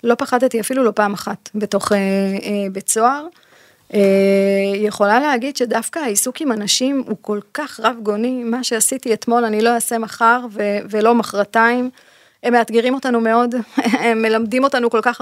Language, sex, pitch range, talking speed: Hebrew, female, 210-260 Hz, 165 wpm